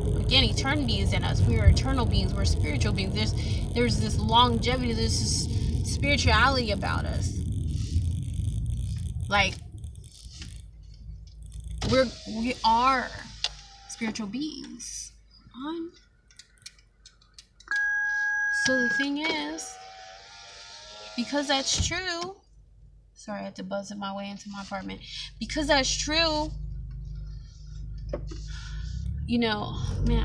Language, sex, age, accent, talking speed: English, female, 20-39, American, 105 wpm